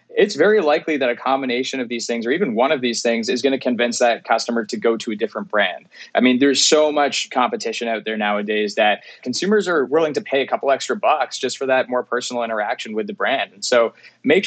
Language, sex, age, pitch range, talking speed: English, male, 20-39, 115-140 Hz, 240 wpm